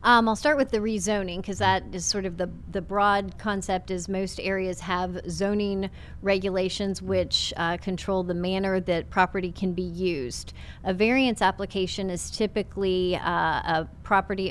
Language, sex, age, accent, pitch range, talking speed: English, female, 30-49, American, 180-205 Hz, 160 wpm